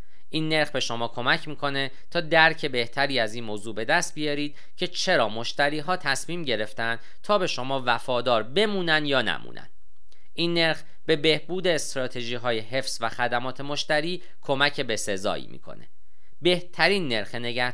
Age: 40-59